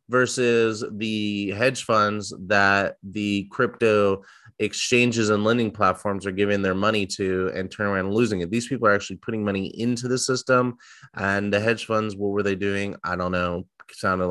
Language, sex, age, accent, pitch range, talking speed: English, male, 20-39, American, 105-125 Hz, 175 wpm